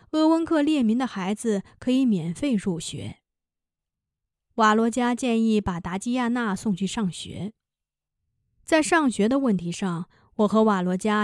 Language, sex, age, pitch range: Chinese, female, 20-39, 190-260 Hz